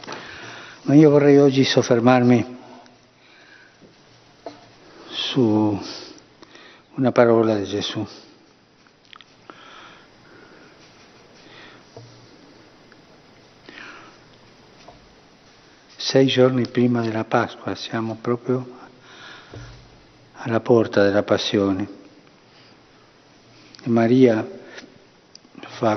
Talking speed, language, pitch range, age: 55 wpm, Italian, 110-130 Hz, 60-79